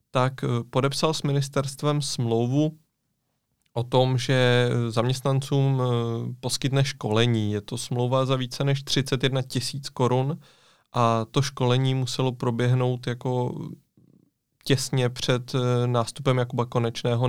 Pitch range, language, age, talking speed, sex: 120-130 Hz, Czech, 20-39, 105 wpm, male